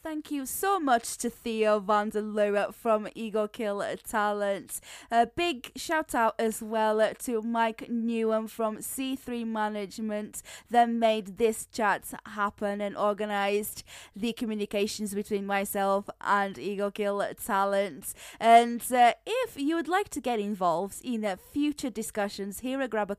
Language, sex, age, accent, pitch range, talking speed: English, female, 10-29, British, 205-250 Hz, 150 wpm